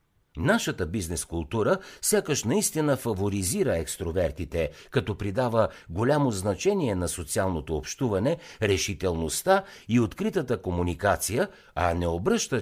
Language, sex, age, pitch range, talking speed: Bulgarian, male, 60-79, 85-135 Hz, 95 wpm